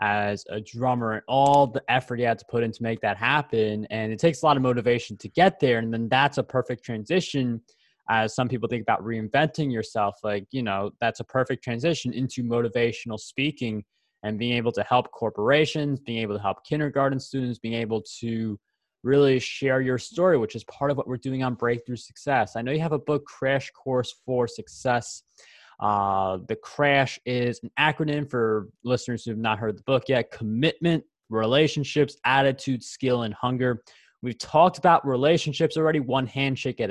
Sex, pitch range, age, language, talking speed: male, 115-140 Hz, 20-39, English, 190 wpm